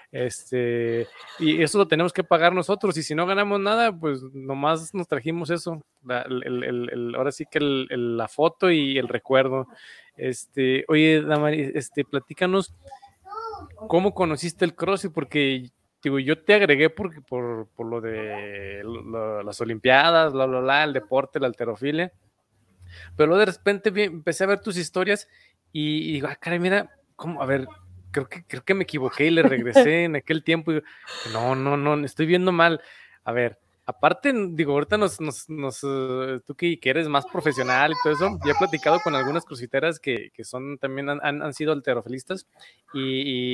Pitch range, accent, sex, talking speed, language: 130-170 Hz, Mexican, male, 180 wpm, Spanish